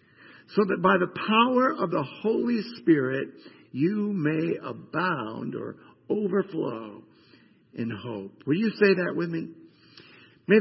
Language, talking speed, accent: English, 130 wpm, American